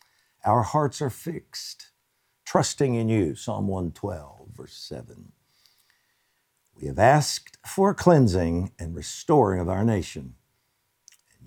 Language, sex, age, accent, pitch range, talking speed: English, male, 60-79, American, 90-140 Hz, 115 wpm